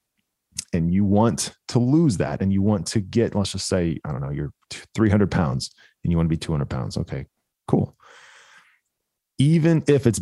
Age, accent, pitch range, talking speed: 30-49, American, 90-110 Hz, 190 wpm